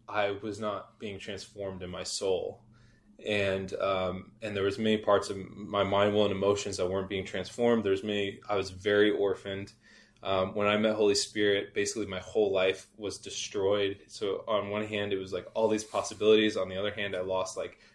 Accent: American